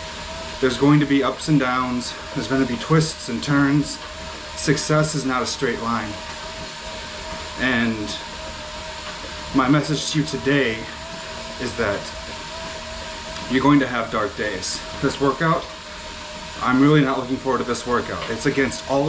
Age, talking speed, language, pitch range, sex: 30-49, 150 wpm, English, 125-150 Hz, male